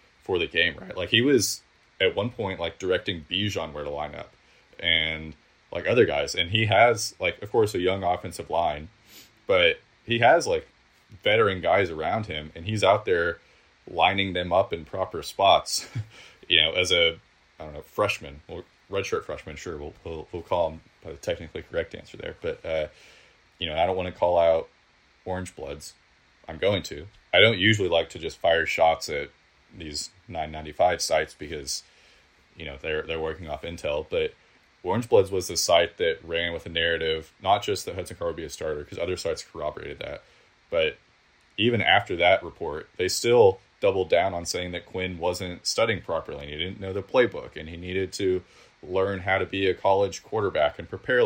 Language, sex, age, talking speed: English, male, 20-39, 195 wpm